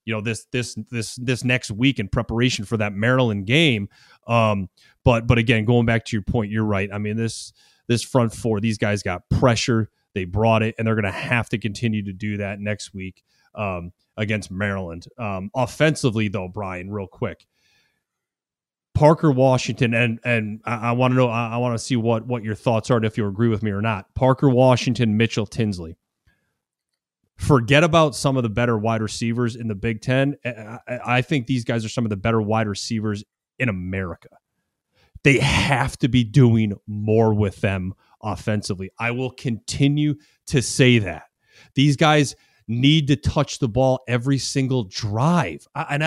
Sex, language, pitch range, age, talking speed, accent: male, English, 110-130 Hz, 30-49, 180 wpm, American